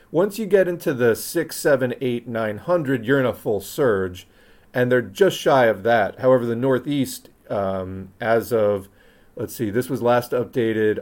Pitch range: 105-135 Hz